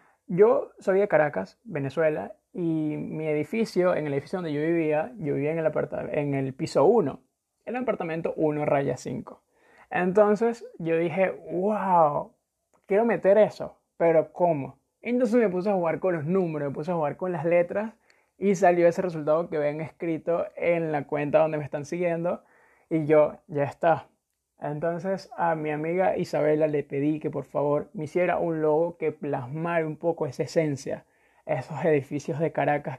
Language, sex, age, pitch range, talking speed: Spanish, male, 20-39, 150-175 Hz, 170 wpm